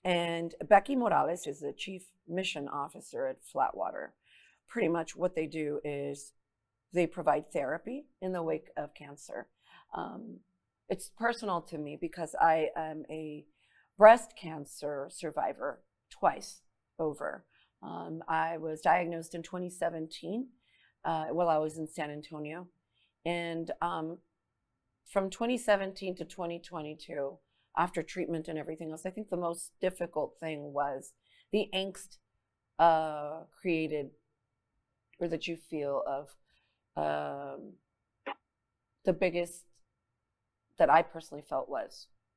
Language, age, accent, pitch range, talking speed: English, 40-59, American, 150-180 Hz, 120 wpm